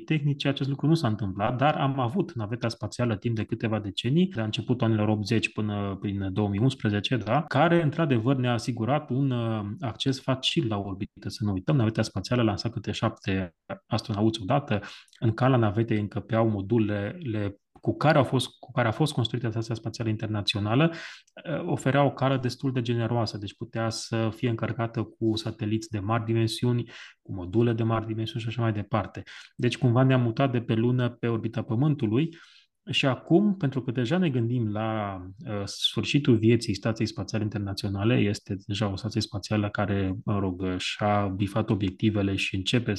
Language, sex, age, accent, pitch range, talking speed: Romanian, male, 20-39, native, 105-130 Hz, 170 wpm